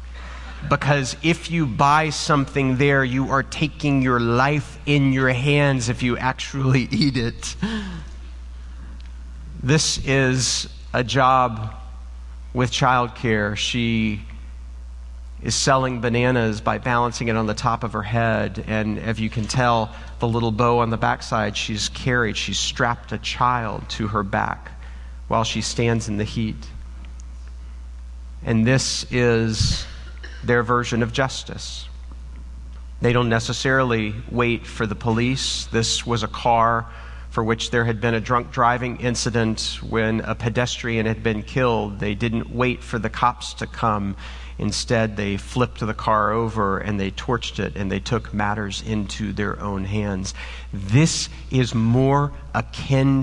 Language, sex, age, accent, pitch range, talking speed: English, male, 40-59, American, 95-125 Hz, 145 wpm